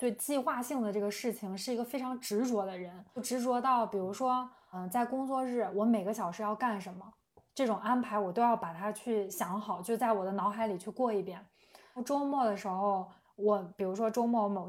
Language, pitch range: Chinese, 195-235 Hz